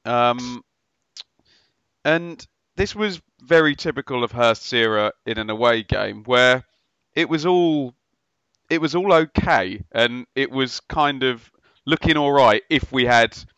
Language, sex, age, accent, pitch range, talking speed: English, male, 30-49, British, 115-145 Hz, 135 wpm